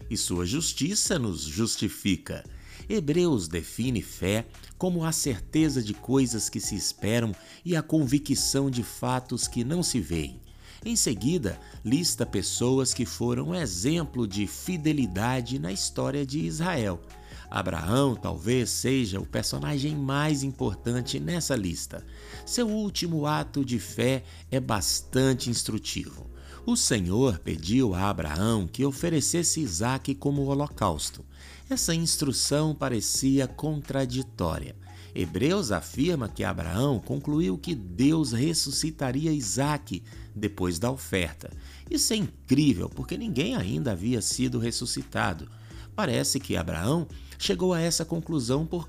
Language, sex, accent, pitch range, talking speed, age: Portuguese, male, Brazilian, 95-150 Hz, 120 wpm, 60-79